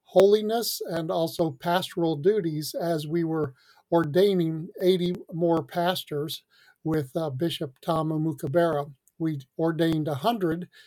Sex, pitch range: male, 155-180 Hz